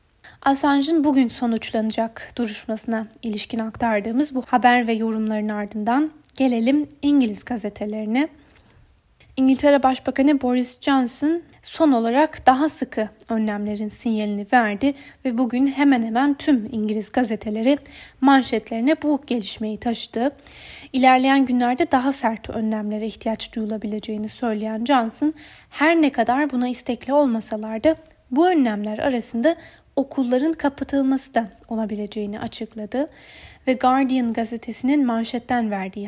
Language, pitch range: Turkish, 220-280 Hz